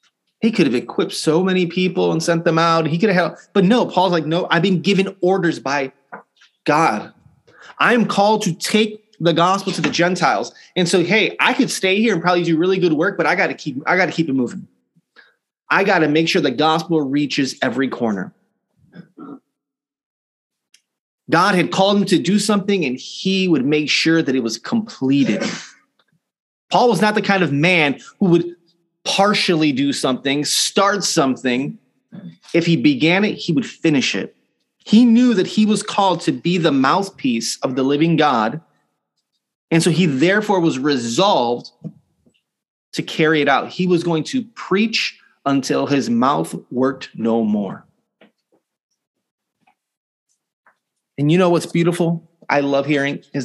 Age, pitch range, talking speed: 30-49, 150-195 Hz, 170 wpm